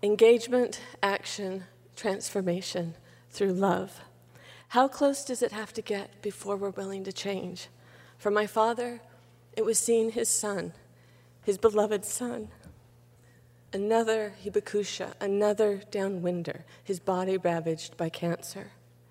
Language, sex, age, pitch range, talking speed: English, female, 40-59, 170-215 Hz, 115 wpm